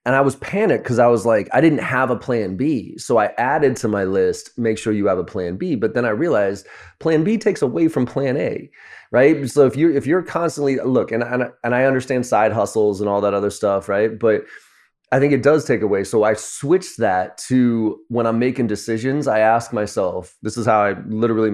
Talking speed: 230 wpm